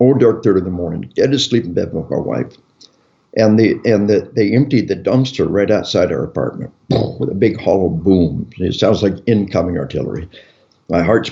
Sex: male